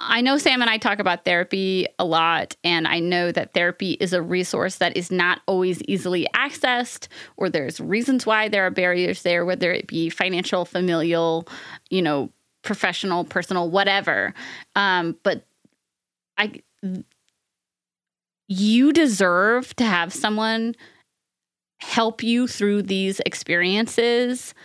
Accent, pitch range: American, 180-230 Hz